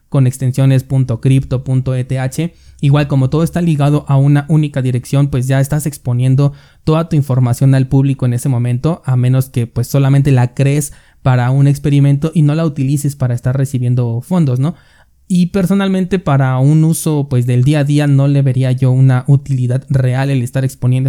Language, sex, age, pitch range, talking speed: Spanish, male, 20-39, 130-150 Hz, 175 wpm